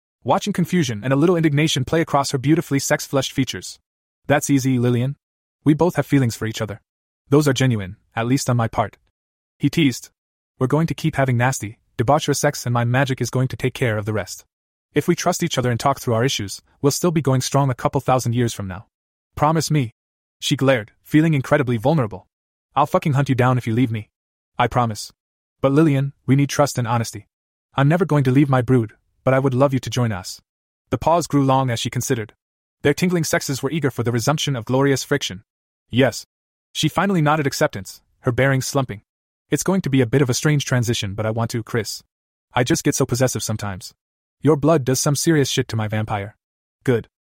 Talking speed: 215 wpm